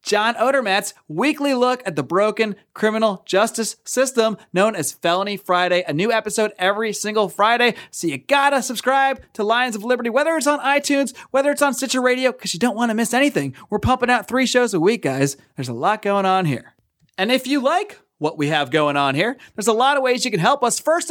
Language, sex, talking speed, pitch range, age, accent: English, male, 220 wpm, 190-255 Hz, 30-49, American